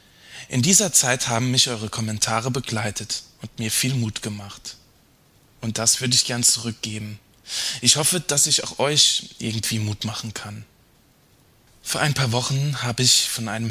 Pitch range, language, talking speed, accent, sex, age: 110-140 Hz, German, 160 wpm, German, male, 20-39